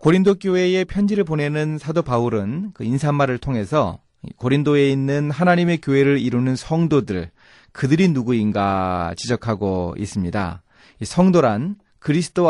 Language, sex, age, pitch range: Korean, male, 30-49, 105-160 Hz